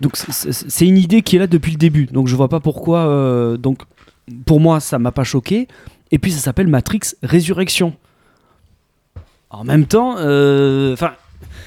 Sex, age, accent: male, 20-39, French